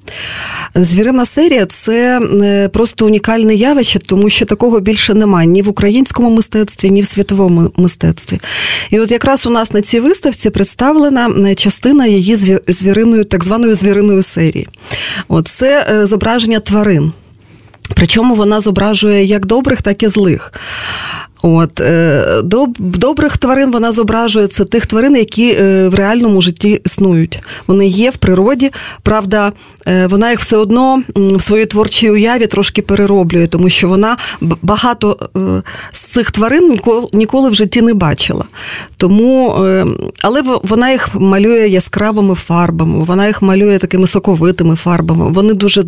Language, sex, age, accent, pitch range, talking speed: Ukrainian, female, 40-59, native, 190-230 Hz, 135 wpm